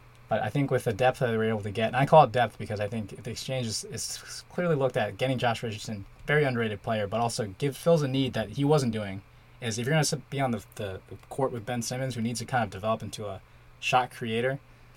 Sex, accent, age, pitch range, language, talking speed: male, American, 20-39, 110-135 Hz, English, 265 wpm